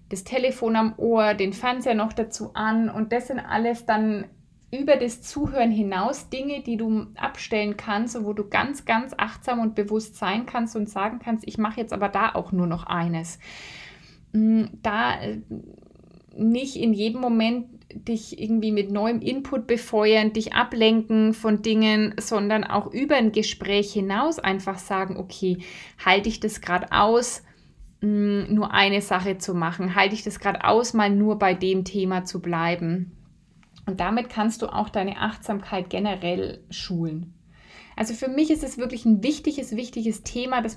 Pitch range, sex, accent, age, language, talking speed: 200-240 Hz, female, German, 20-39, German, 160 wpm